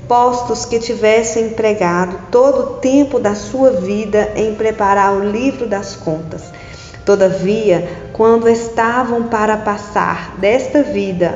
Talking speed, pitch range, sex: 120 wpm, 200-255 Hz, female